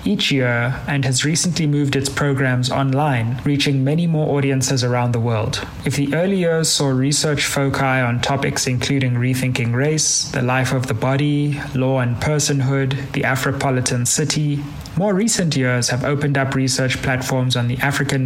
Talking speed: 165 wpm